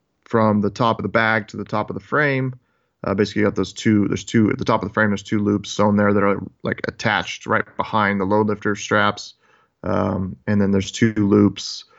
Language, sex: English, male